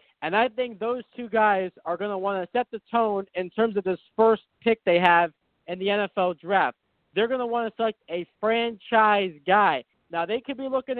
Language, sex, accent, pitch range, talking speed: English, male, American, 200-240 Hz, 220 wpm